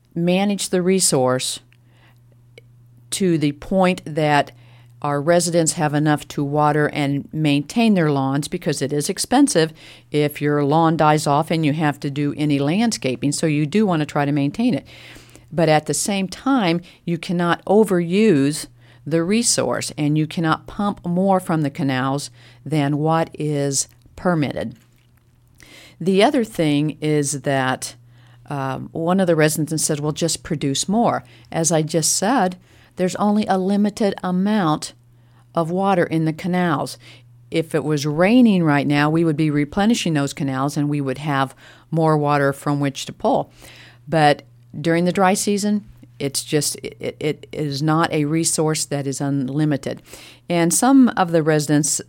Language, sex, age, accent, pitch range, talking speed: English, female, 50-69, American, 135-170 Hz, 155 wpm